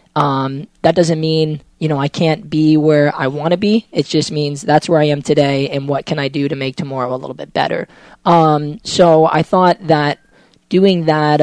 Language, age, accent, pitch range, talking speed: English, 20-39, American, 145-160 Hz, 215 wpm